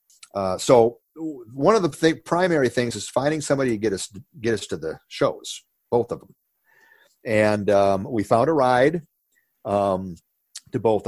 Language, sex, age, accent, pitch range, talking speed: English, male, 50-69, American, 100-130 Hz, 170 wpm